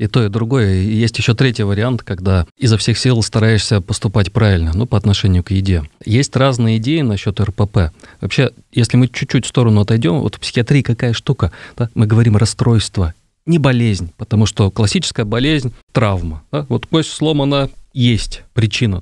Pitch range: 105-130 Hz